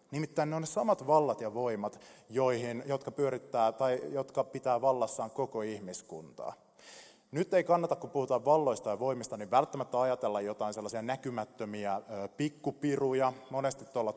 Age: 30-49